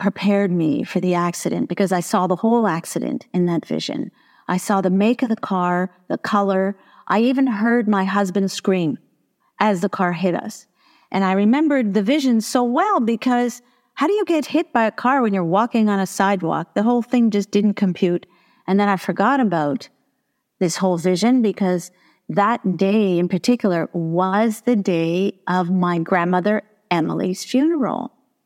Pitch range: 185-240 Hz